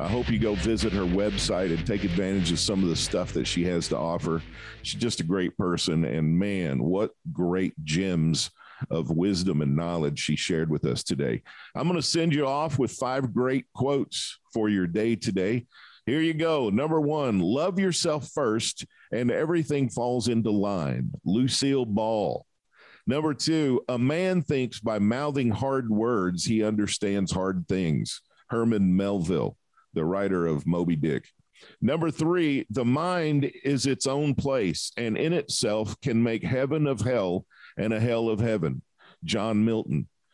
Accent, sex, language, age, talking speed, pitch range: American, male, English, 50-69, 165 wpm, 100-140 Hz